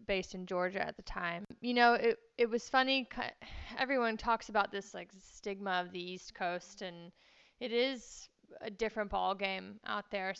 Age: 20-39